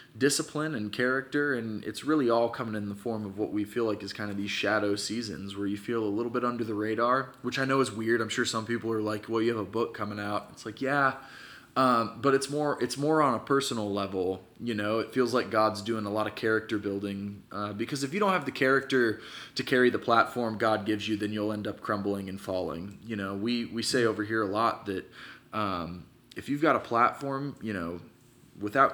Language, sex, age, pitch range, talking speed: English, male, 20-39, 105-130 Hz, 240 wpm